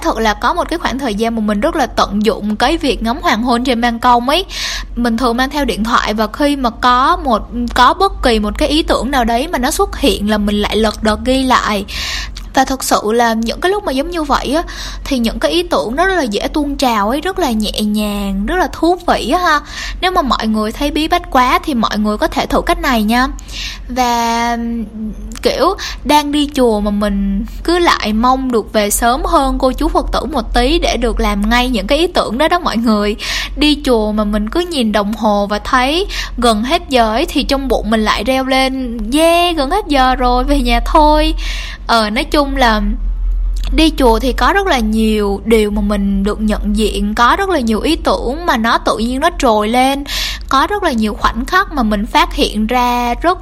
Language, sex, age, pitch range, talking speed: Vietnamese, female, 10-29, 220-295 Hz, 235 wpm